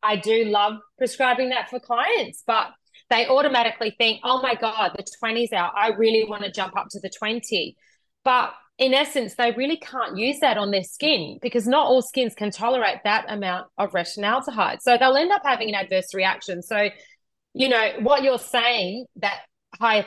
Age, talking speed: 30-49, 185 wpm